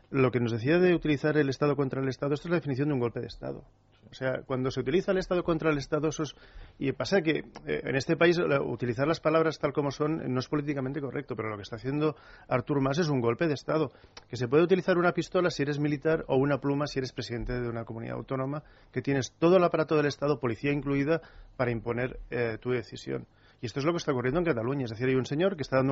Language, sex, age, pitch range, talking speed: Spanish, male, 40-59, 120-155 Hz, 250 wpm